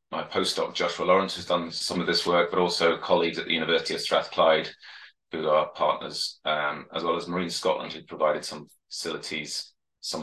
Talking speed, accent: 190 wpm, British